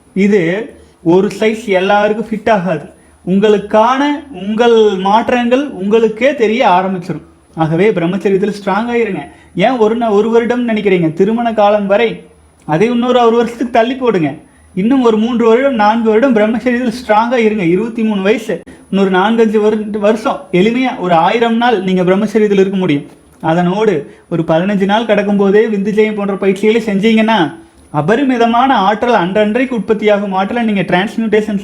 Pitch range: 190-230 Hz